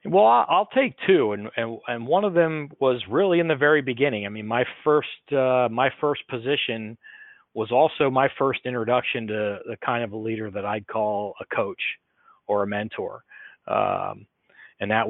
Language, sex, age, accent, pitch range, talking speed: English, male, 40-59, American, 105-125 Hz, 185 wpm